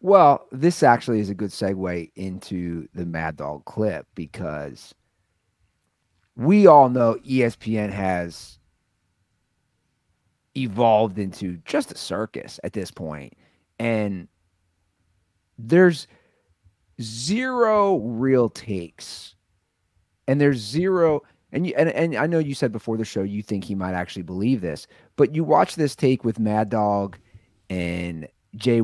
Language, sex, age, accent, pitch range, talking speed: English, male, 30-49, American, 95-130 Hz, 125 wpm